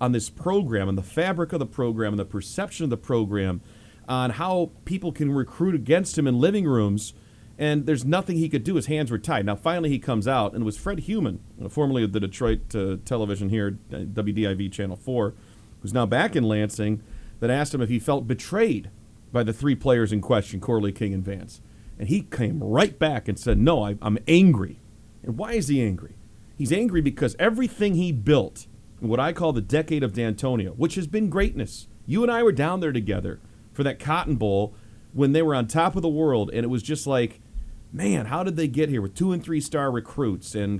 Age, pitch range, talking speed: 40-59, 110-155 Hz, 215 wpm